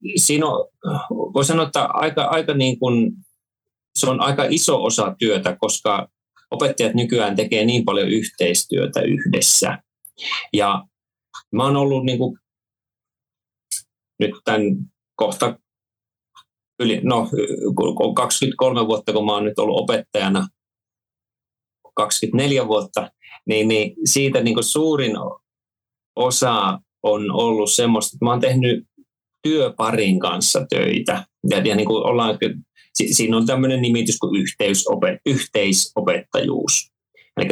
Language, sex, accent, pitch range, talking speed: Finnish, male, native, 105-140 Hz, 110 wpm